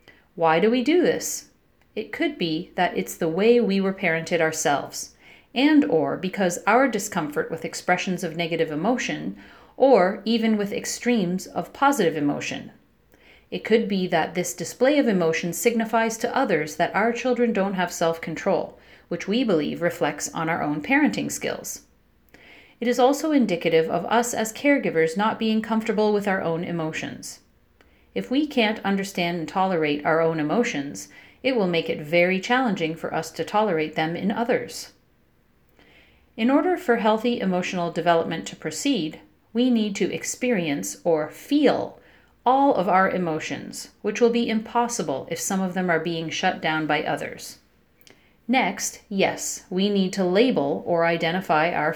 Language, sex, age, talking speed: English, female, 40-59, 160 wpm